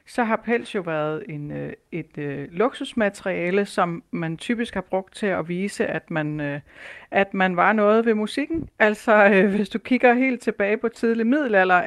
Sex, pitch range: female, 175-225 Hz